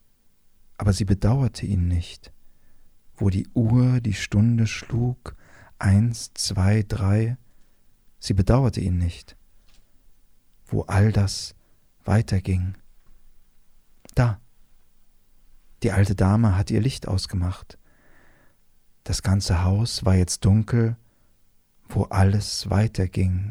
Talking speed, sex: 100 wpm, male